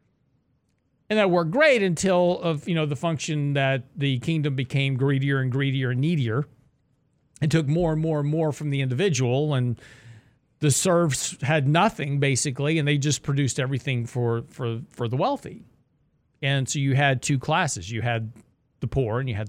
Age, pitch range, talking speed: 40-59, 130-160 Hz, 180 wpm